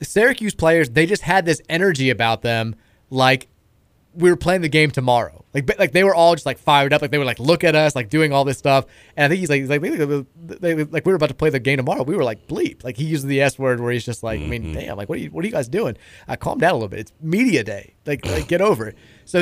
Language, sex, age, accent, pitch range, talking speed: English, male, 30-49, American, 120-150 Hz, 290 wpm